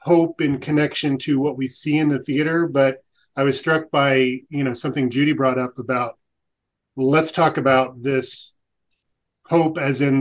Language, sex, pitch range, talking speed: English, male, 130-150 Hz, 170 wpm